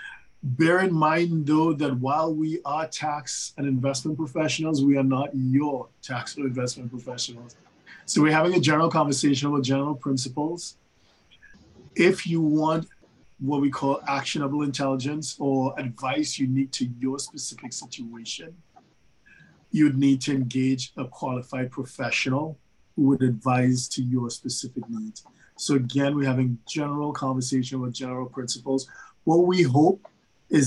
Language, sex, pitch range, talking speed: English, male, 130-145 Hz, 140 wpm